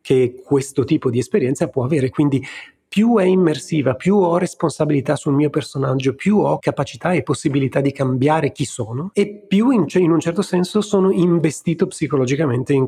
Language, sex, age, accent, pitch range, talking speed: Italian, male, 30-49, native, 130-165 Hz, 170 wpm